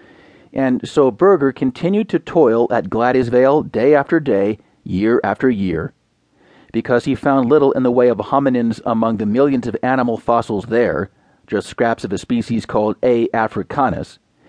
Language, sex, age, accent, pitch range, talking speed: English, male, 40-59, American, 120-150 Hz, 155 wpm